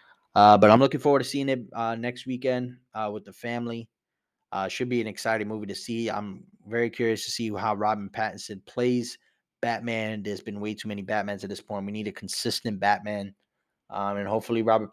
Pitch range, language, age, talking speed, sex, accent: 105-125 Hz, English, 20-39, 205 wpm, male, American